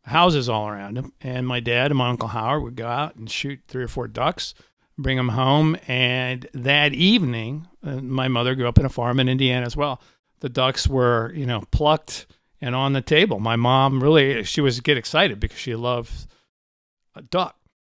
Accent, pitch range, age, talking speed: American, 125-180 Hz, 50-69, 200 wpm